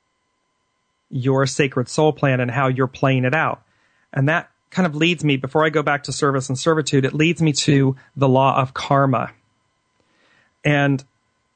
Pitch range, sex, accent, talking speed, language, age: 130-160 Hz, male, American, 170 wpm, English, 40-59